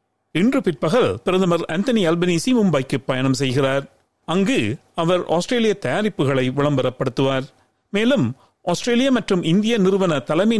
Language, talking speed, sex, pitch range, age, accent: Tamil, 95 wpm, male, 150-220 Hz, 40-59, native